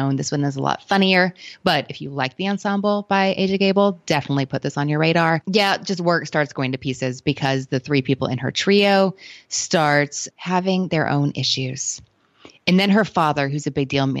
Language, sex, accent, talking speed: English, female, American, 205 wpm